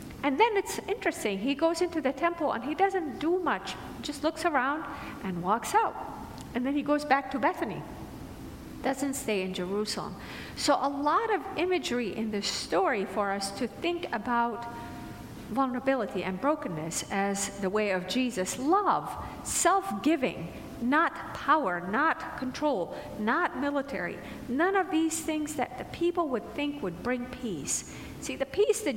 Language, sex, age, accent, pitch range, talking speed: English, female, 50-69, American, 215-315 Hz, 155 wpm